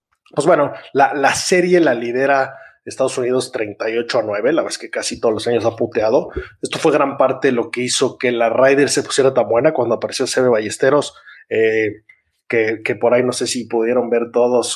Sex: male